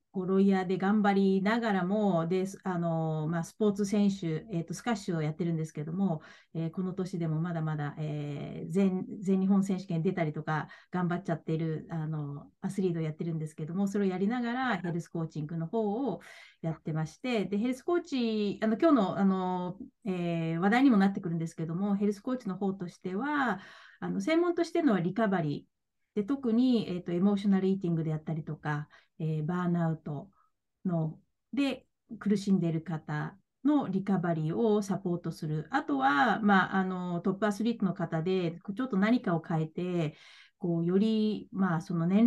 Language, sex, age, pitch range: Japanese, female, 30-49, 170-210 Hz